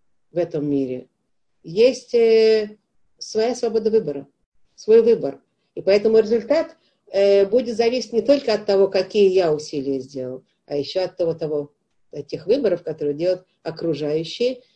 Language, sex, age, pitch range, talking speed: Russian, female, 50-69, 160-205 Hz, 140 wpm